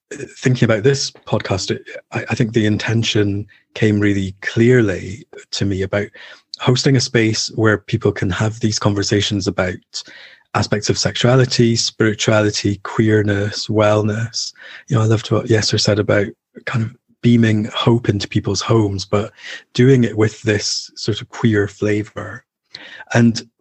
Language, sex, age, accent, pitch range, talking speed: English, male, 30-49, British, 105-120 Hz, 140 wpm